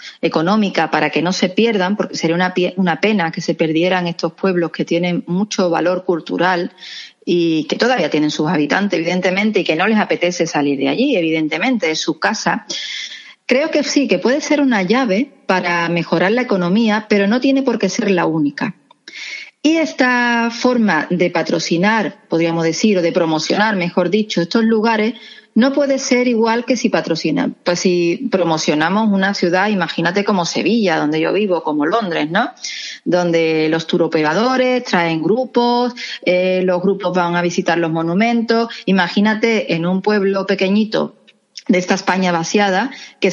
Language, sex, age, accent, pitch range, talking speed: Spanish, female, 40-59, Spanish, 175-245 Hz, 165 wpm